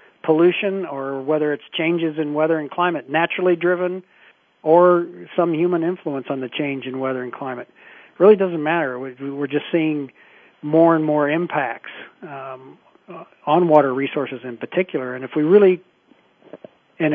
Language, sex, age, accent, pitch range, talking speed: English, male, 50-69, American, 140-170 Hz, 155 wpm